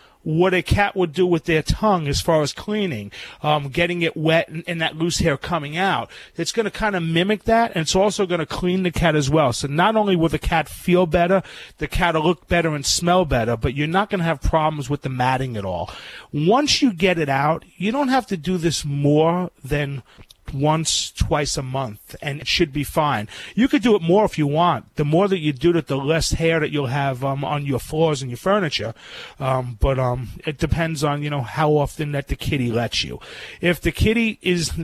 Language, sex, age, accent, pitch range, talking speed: English, male, 40-59, American, 140-175 Hz, 235 wpm